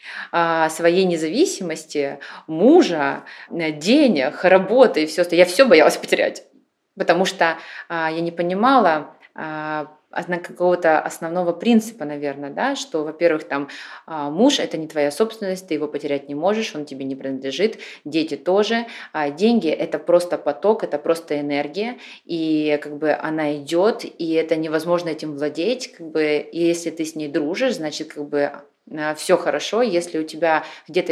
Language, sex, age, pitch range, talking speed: Russian, female, 20-39, 150-180 Hz, 145 wpm